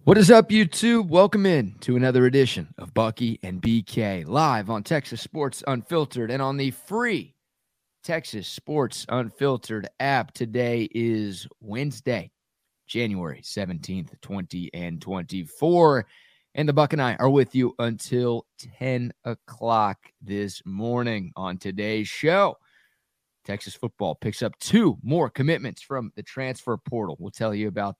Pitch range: 110-140 Hz